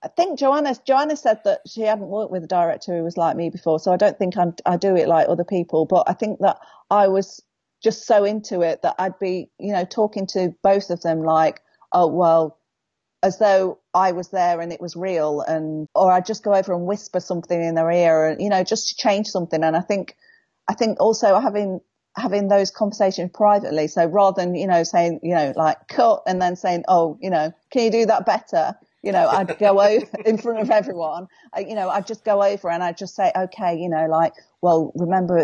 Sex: female